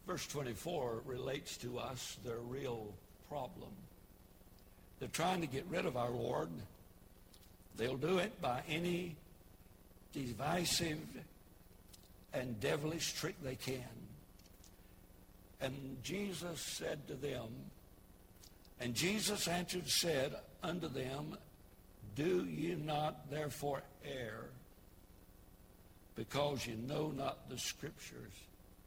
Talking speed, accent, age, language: 100 wpm, American, 60-79, English